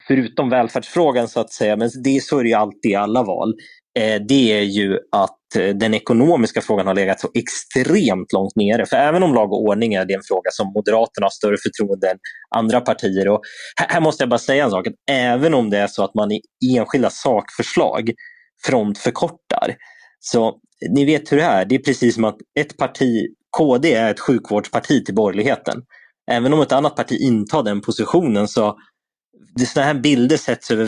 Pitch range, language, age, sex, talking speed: 105-130 Hz, Swedish, 20-39, male, 185 wpm